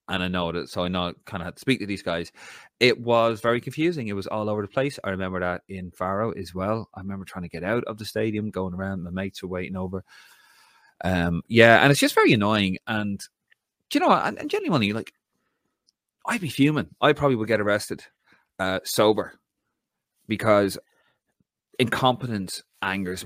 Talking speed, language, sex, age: 195 wpm, English, male, 30-49